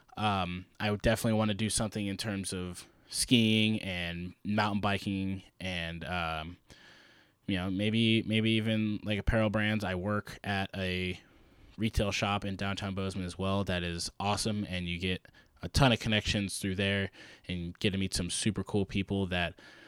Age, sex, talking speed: 20-39, male, 170 wpm